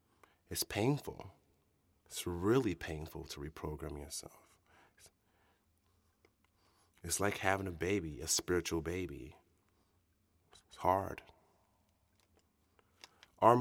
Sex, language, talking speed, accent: male, English, 85 wpm, American